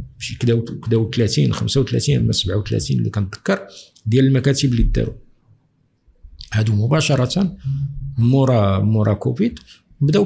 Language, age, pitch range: Arabic, 50-69, 110-145 Hz